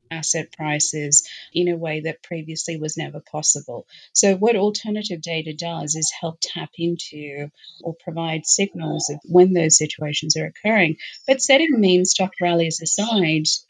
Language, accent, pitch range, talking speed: English, Australian, 155-175 Hz, 150 wpm